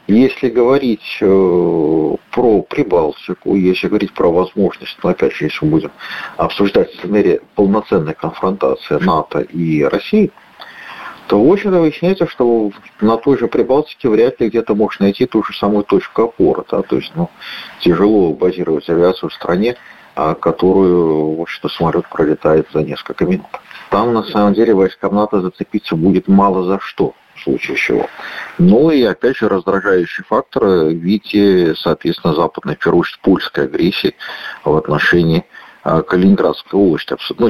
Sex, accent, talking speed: male, native, 140 wpm